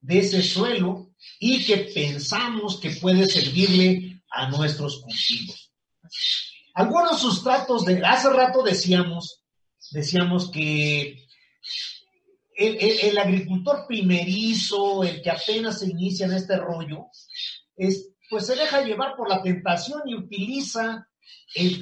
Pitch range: 165-220 Hz